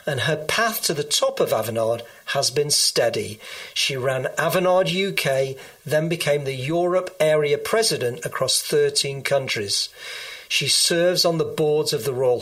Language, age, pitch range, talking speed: English, 40-59, 135-190 Hz, 155 wpm